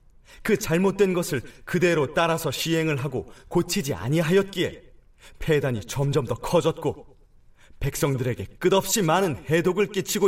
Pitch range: 130-190 Hz